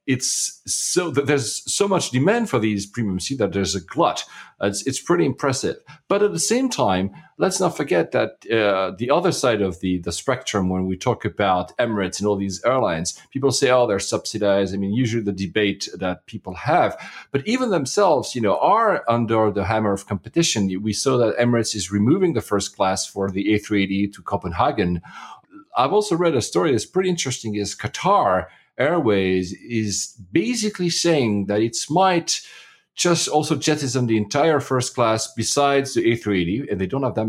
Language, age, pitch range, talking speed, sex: English, 40-59, 100-140 Hz, 185 wpm, male